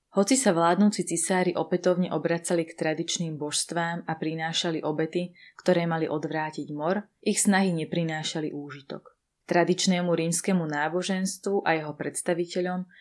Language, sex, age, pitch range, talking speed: Slovak, female, 20-39, 160-195 Hz, 120 wpm